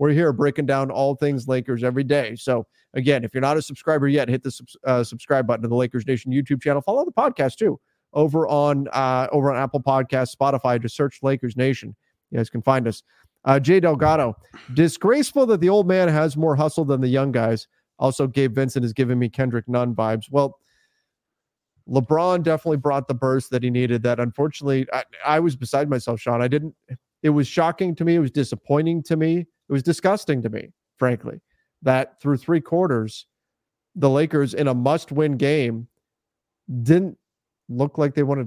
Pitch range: 125-150 Hz